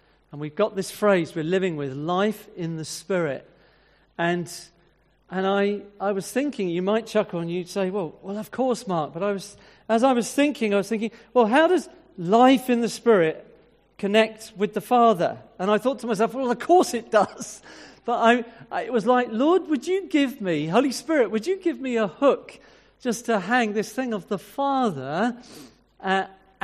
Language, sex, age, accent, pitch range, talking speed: English, male, 40-59, British, 170-225 Hz, 200 wpm